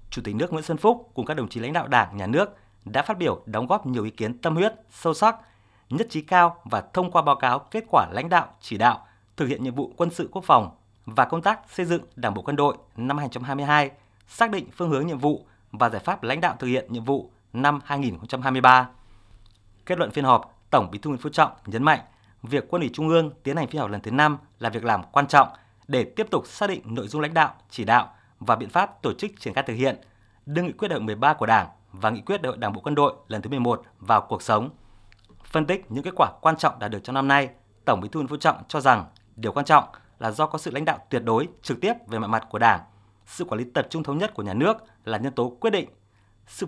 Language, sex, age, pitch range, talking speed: Vietnamese, male, 20-39, 110-155 Hz, 260 wpm